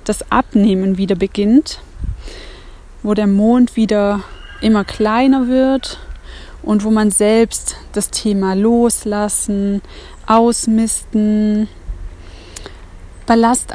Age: 20-39